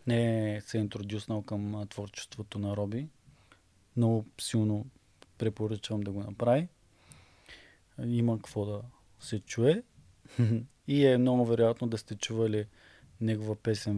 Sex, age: male, 20-39